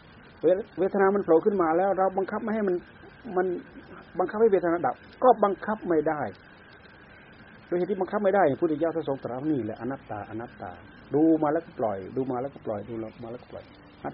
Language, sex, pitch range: Thai, male, 115-160 Hz